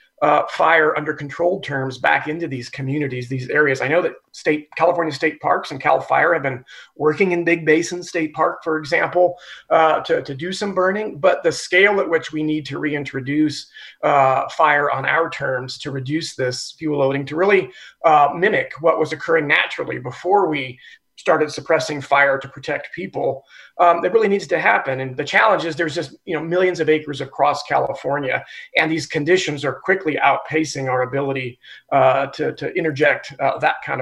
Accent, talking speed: American, 185 wpm